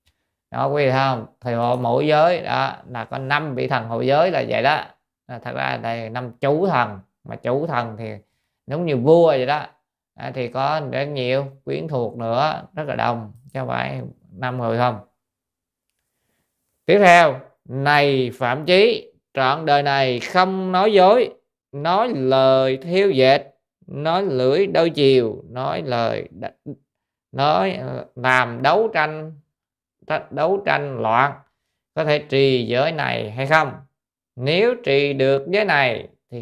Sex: male